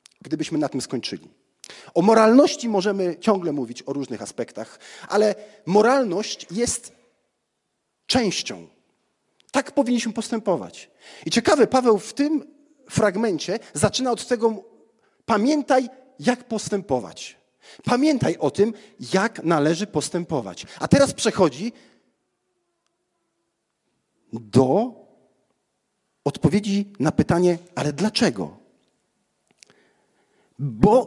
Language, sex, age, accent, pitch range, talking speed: Polish, male, 40-59, native, 160-230 Hz, 90 wpm